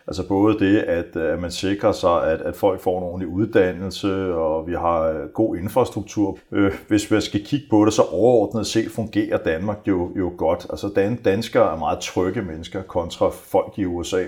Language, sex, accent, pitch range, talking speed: Danish, male, native, 90-115 Hz, 185 wpm